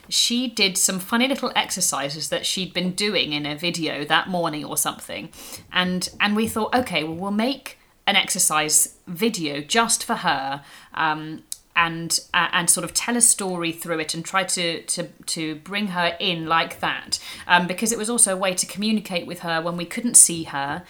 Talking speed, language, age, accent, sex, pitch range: 195 wpm, English, 30-49, British, female, 170-210 Hz